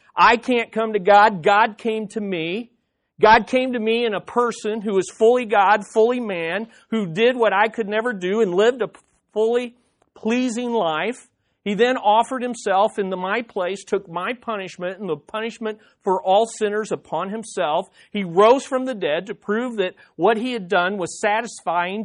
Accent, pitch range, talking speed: American, 195-240 Hz, 180 wpm